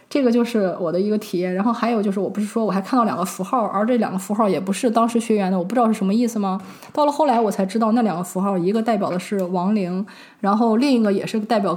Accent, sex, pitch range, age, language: native, female, 190-230 Hz, 20-39, Chinese